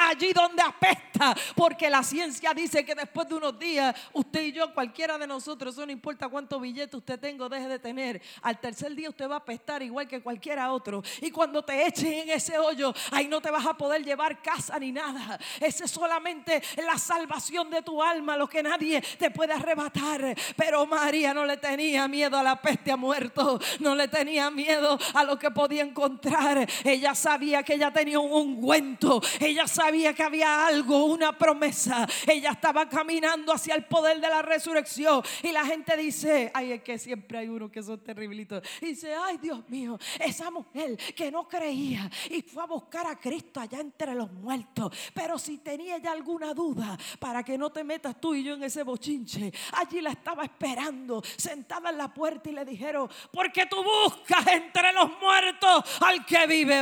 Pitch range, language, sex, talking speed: 275-320 Hz, Spanish, female, 195 wpm